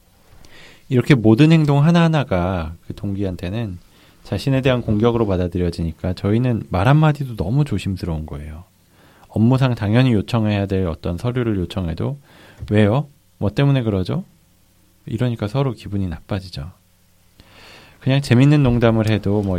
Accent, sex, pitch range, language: native, male, 90-115 Hz, Korean